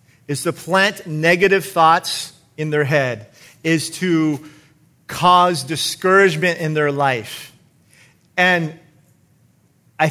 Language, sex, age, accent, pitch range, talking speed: English, male, 40-59, American, 145-185 Hz, 100 wpm